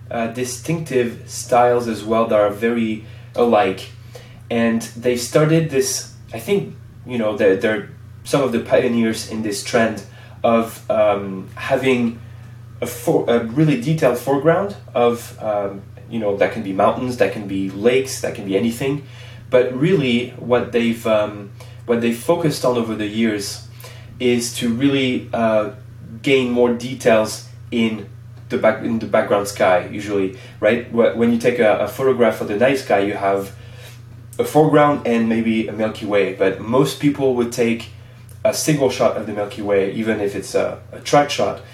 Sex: male